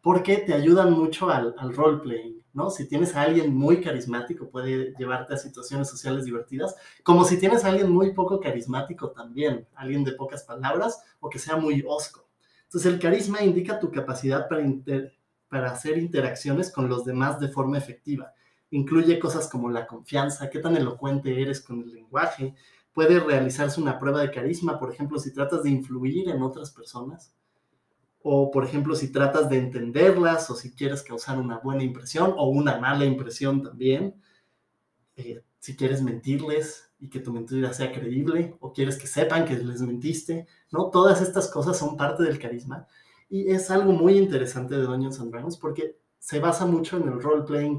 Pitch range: 130-165 Hz